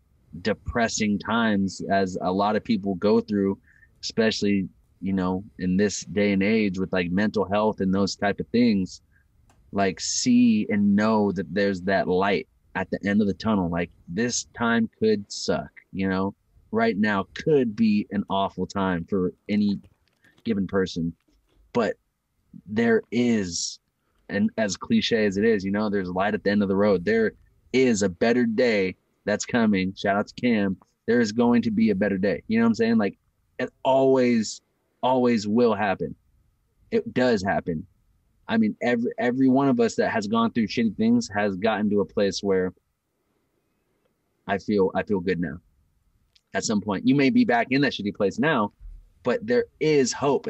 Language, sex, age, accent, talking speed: English, male, 20-39, American, 180 wpm